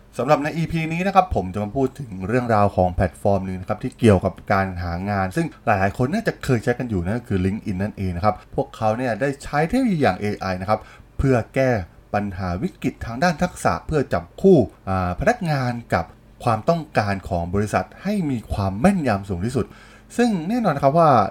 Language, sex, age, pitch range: Thai, male, 20-39, 100-140 Hz